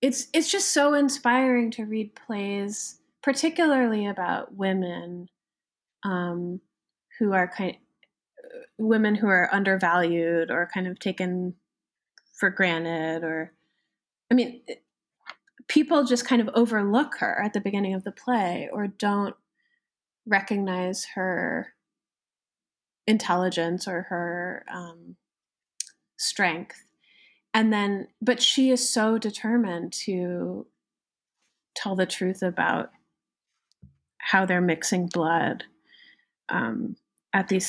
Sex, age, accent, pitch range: female, 20-39, American, 180-235 Hz